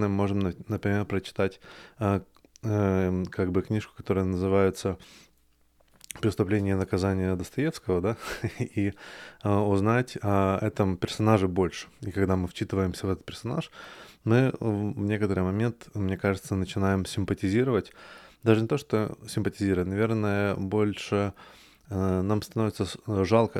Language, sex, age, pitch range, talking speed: Russian, male, 20-39, 95-105 Hz, 125 wpm